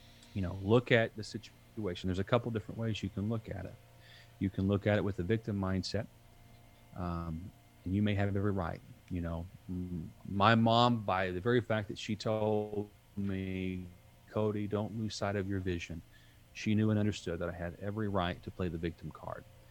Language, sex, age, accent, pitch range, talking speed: English, male, 40-59, American, 90-110 Hz, 200 wpm